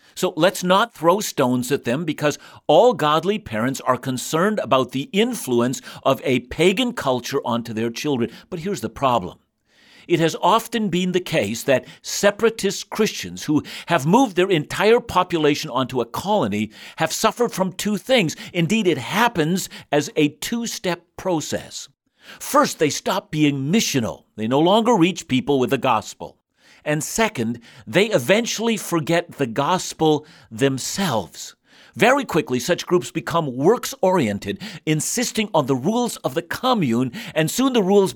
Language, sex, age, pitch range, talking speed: English, male, 60-79, 135-200 Hz, 150 wpm